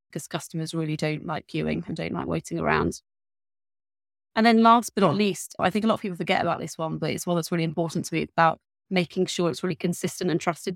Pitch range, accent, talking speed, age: 165-185 Hz, British, 245 wpm, 20-39